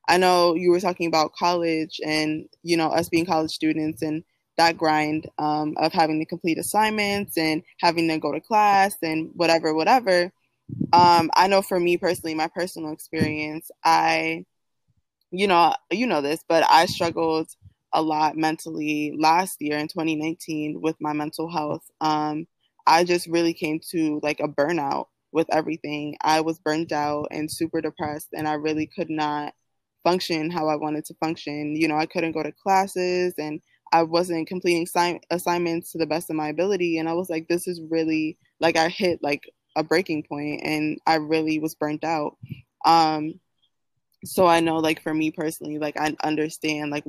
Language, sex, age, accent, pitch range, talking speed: English, female, 20-39, American, 155-170 Hz, 180 wpm